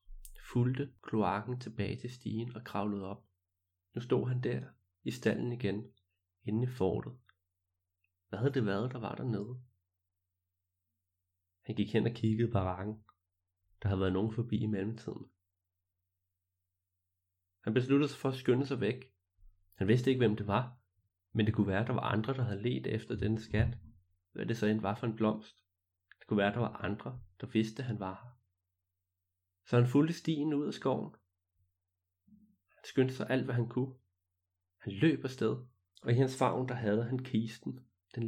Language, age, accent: Danish, 30-49, native